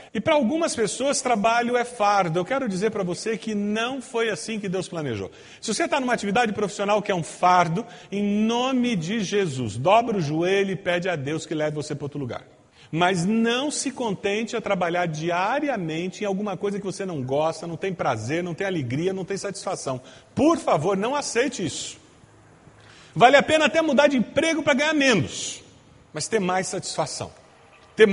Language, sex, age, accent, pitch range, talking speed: Portuguese, male, 40-59, Brazilian, 180-250 Hz, 190 wpm